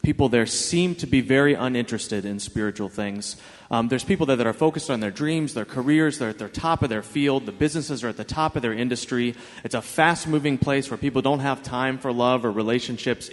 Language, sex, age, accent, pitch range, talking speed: English, male, 30-49, American, 110-140 Hz, 235 wpm